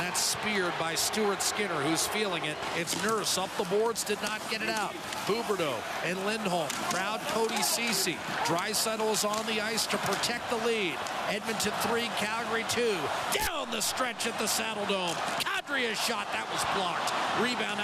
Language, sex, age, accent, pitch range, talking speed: English, male, 50-69, American, 225-275 Hz, 170 wpm